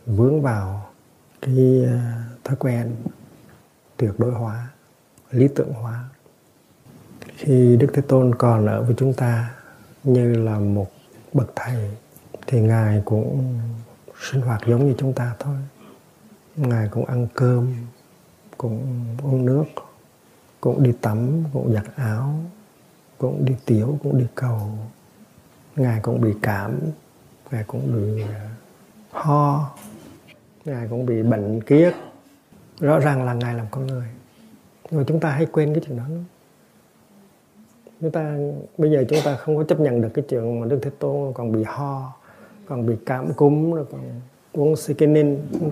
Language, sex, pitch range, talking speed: Vietnamese, male, 115-145 Hz, 145 wpm